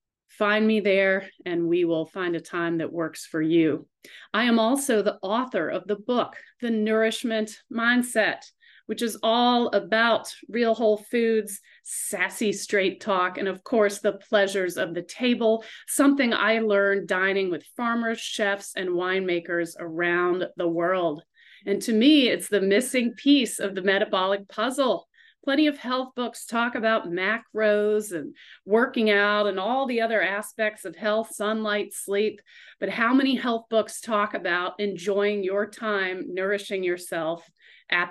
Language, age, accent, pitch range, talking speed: English, 40-59, American, 185-230 Hz, 155 wpm